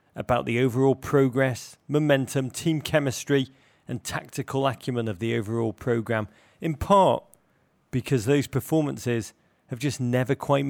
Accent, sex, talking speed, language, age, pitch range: British, male, 130 wpm, English, 30-49, 125-155 Hz